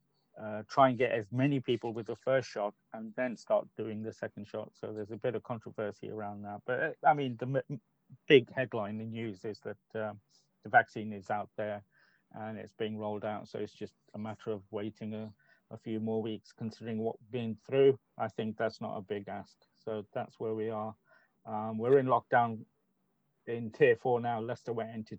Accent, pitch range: British, 110-120 Hz